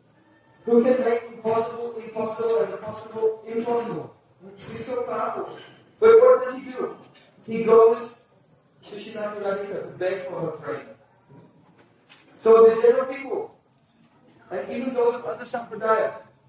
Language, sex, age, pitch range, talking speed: Hindi, male, 50-69, 185-230 Hz, 125 wpm